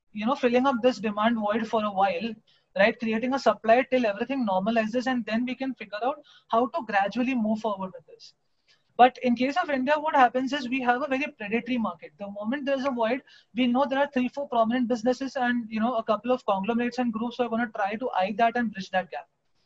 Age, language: 20-39, English